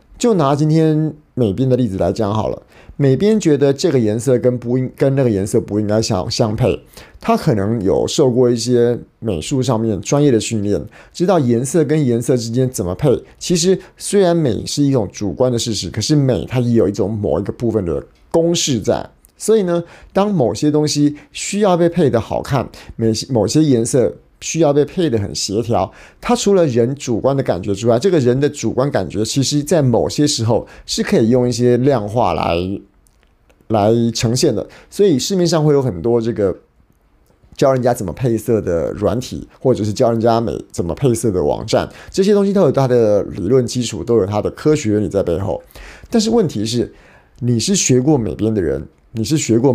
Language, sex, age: Chinese, male, 50-69